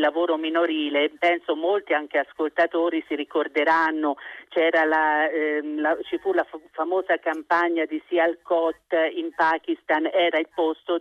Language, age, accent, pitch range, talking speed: Italian, 50-69, native, 155-205 Hz, 135 wpm